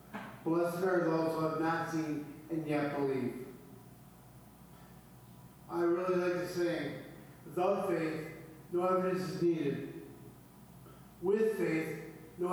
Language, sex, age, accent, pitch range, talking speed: English, male, 50-69, American, 145-175 Hz, 115 wpm